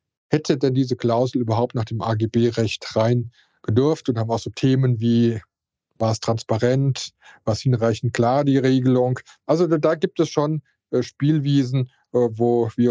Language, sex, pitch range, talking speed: German, male, 115-140 Hz, 150 wpm